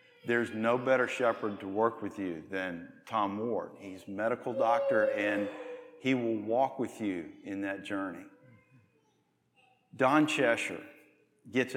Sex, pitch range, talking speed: male, 100-130 Hz, 140 wpm